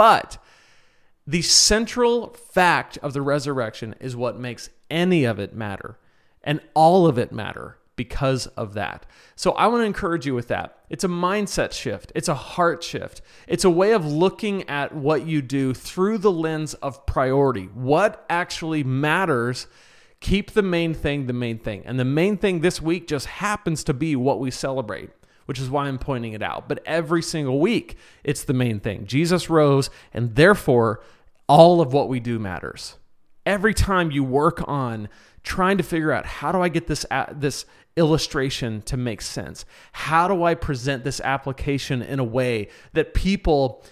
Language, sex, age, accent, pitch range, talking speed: English, male, 30-49, American, 125-175 Hz, 180 wpm